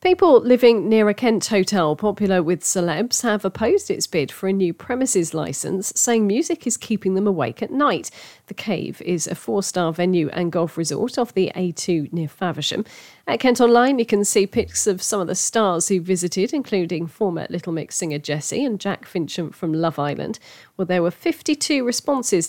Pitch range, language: 165-215 Hz, English